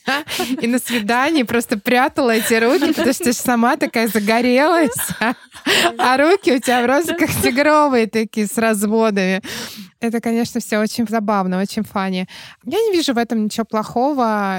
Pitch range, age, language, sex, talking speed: 190-225 Hz, 20-39, Russian, female, 155 wpm